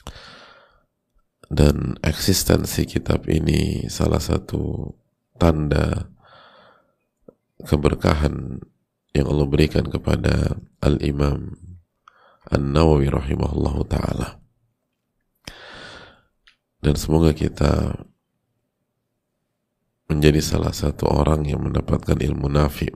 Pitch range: 70-85 Hz